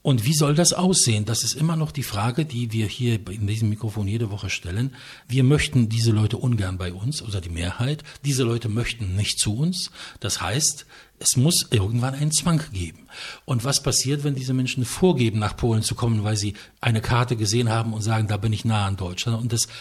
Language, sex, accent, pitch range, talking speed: English, male, German, 105-130 Hz, 215 wpm